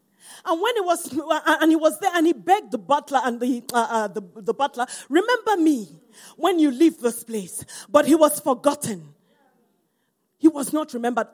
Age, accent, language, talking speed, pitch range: 40-59, Nigerian, English, 190 wpm, 225-310 Hz